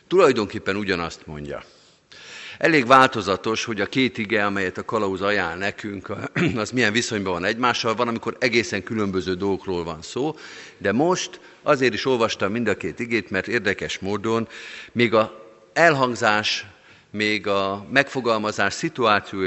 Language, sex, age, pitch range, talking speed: Hungarian, male, 50-69, 100-125 Hz, 140 wpm